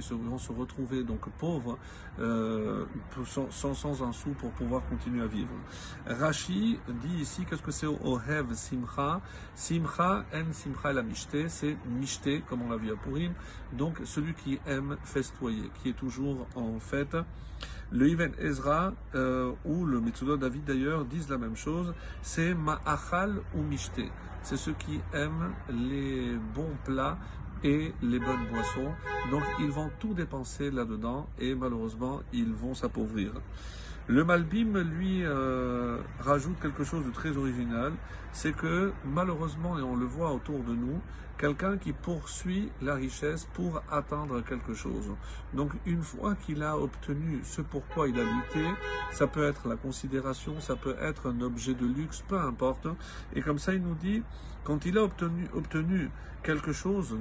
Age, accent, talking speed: 50-69, French, 160 wpm